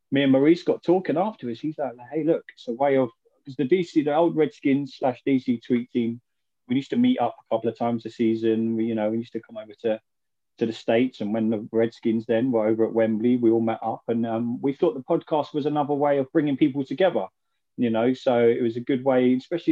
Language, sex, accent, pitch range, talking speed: English, male, British, 115-145 Hz, 255 wpm